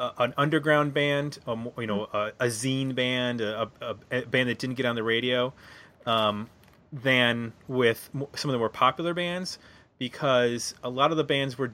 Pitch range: 105-130 Hz